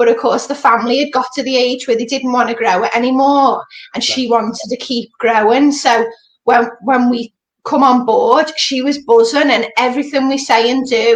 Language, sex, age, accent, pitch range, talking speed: English, female, 20-39, British, 230-270 Hz, 215 wpm